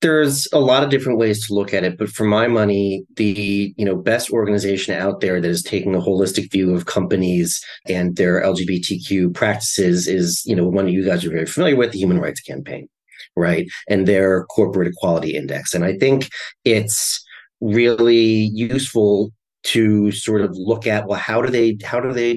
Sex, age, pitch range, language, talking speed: male, 30-49, 100-120 Hz, English, 195 wpm